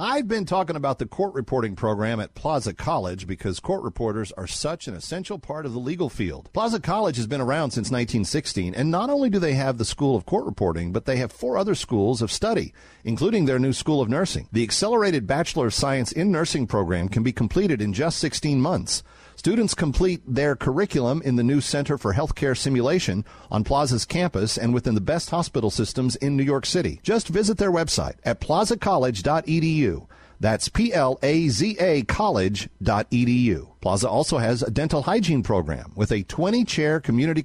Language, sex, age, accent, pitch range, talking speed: English, male, 50-69, American, 115-165 Hz, 185 wpm